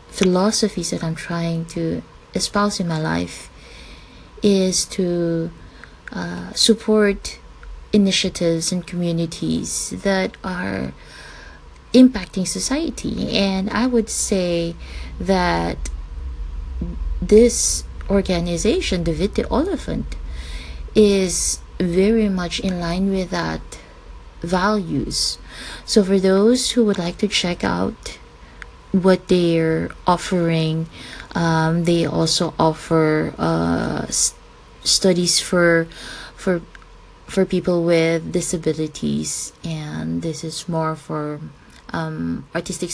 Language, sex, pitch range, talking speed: English, female, 160-190 Hz, 100 wpm